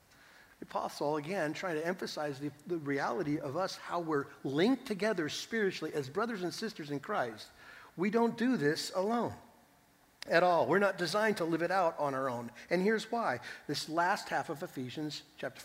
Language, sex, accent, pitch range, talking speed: English, male, American, 150-200 Hz, 180 wpm